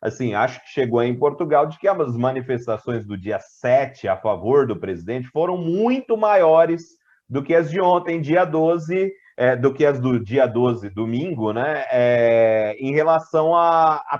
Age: 30-49